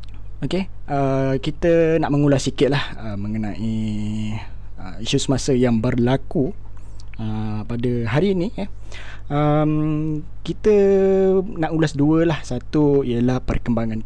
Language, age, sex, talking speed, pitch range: Malay, 20-39, male, 120 wpm, 100-140 Hz